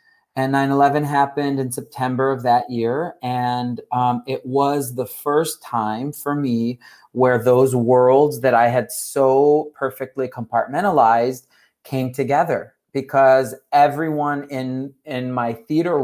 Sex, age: male, 40-59